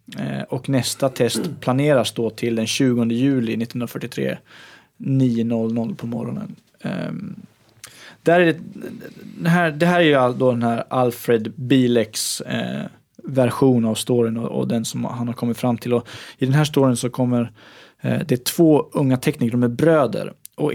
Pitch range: 120-140 Hz